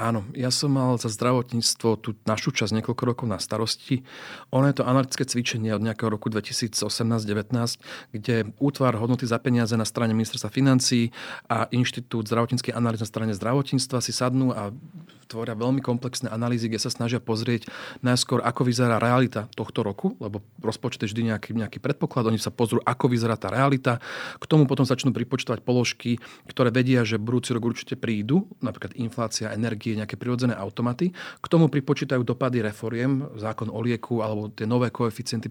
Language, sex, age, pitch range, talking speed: Slovak, male, 40-59, 115-130 Hz, 170 wpm